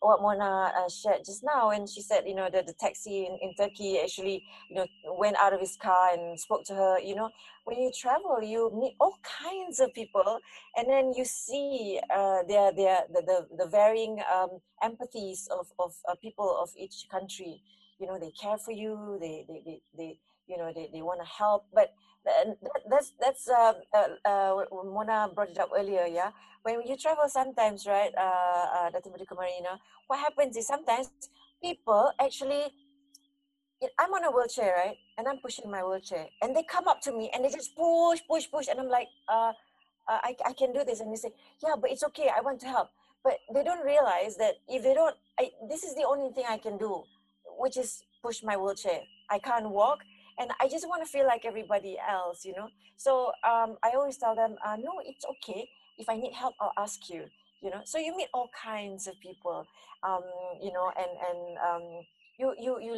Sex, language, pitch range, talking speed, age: female, English, 190-265 Hz, 205 wpm, 30-49